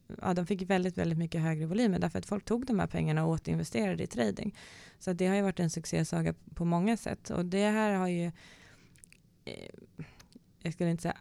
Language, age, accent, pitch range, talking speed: Swedish, 30-49, native, 160-190 Hz, 205 wpm